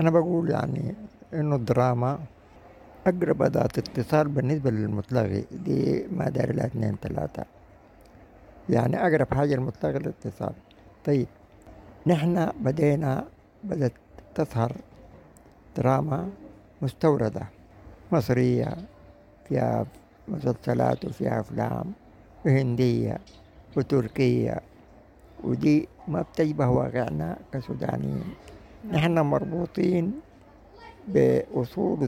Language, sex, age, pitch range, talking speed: English, male, 60-79, 100-150 Hz, 80 wpm